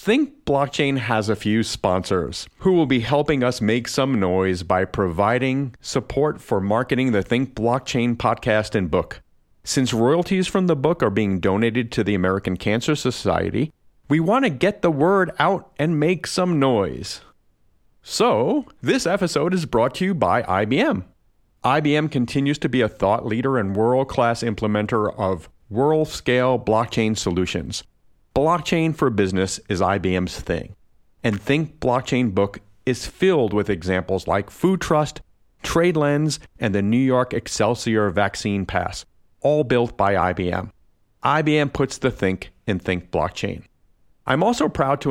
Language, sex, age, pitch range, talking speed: English, male, 40-59, 100-145 Hz, 150 wpm